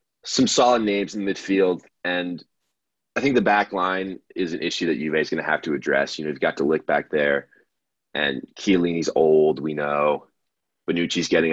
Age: 20-39